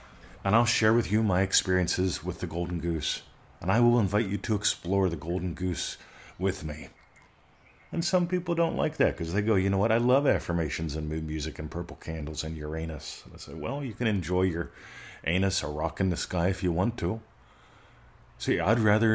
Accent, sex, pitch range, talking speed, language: American, male, 85-110 Hz, 210 wpm, English